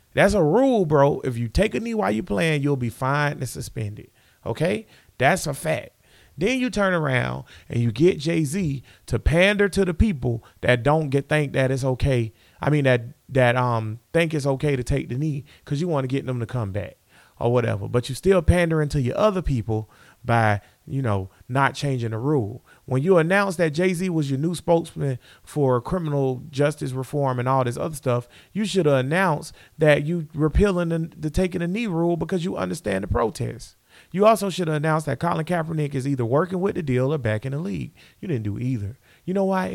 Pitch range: 120-170 Hz